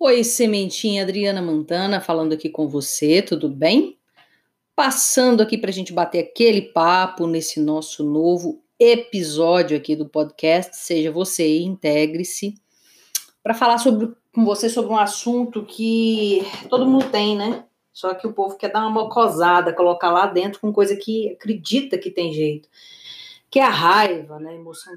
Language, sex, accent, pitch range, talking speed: Portuguese, female, Brazilian, 175-255 Hz, 160 wpm